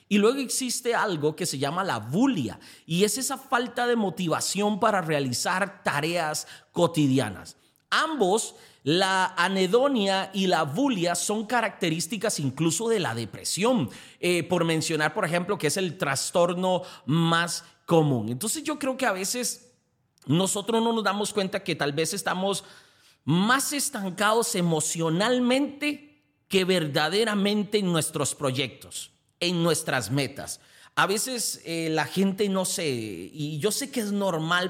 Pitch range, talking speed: 155-210 Hz, 140 wpm